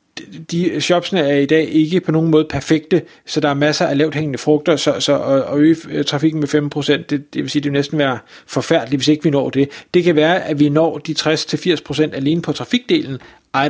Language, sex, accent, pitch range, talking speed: Danish, male, native, 150-185 Hz, 210 wpm